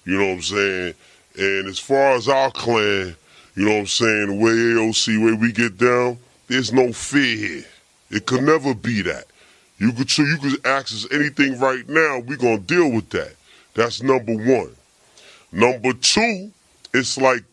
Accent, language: American, English